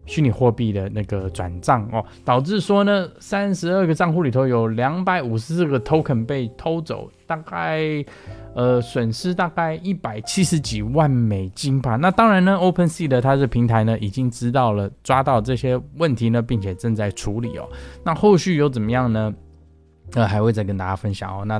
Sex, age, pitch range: male, 20-39, 100-140 Hz